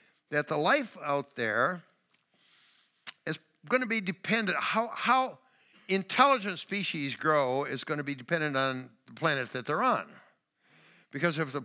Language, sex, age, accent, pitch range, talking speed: English, male, 60-79, American, 125-165 Hz, 140 wpm